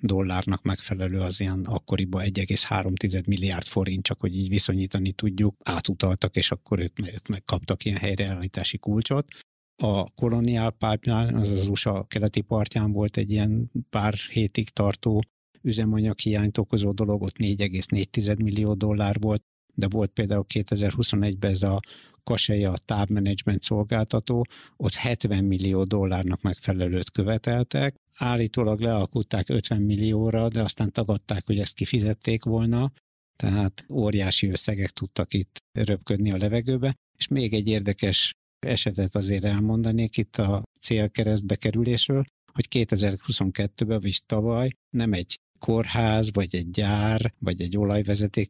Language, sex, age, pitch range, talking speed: Hungarian, male, 60-79, 100-115 Hz, 125 wpm